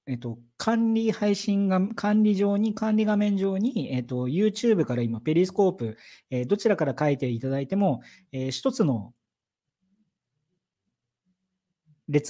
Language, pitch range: Japanese, 130-200 Hz